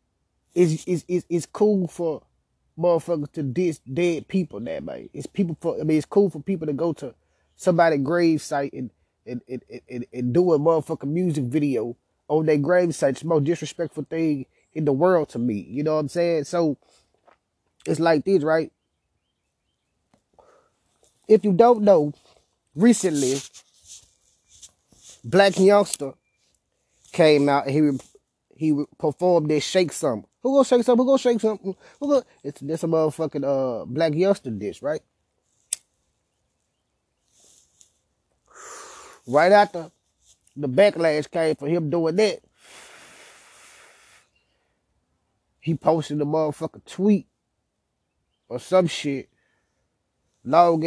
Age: 20-39